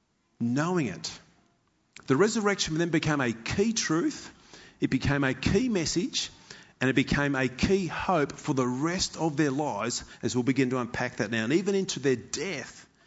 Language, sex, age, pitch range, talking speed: English, male, 40-59, 125-175 Hz, 175 wpm